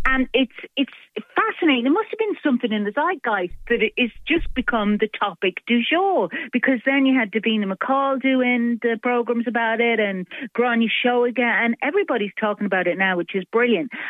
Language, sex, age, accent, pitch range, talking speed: English, female, 40-59, British, 175-245 Hz, 200 wpm